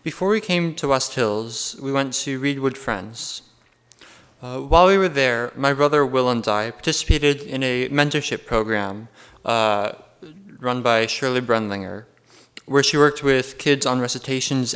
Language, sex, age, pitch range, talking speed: English, male, 20-39, 115-145 Hz, 155 wpm